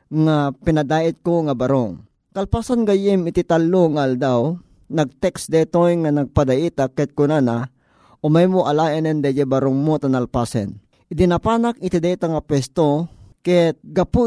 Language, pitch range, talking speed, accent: Filipino, 140-175 Hz, 135 wpm, native